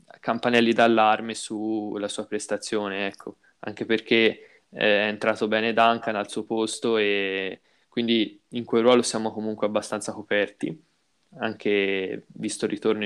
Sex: male